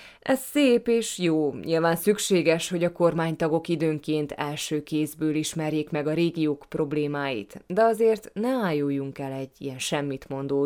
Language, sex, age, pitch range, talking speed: Hungarian, female, 20-39, 150-200 Hz, 140 wpm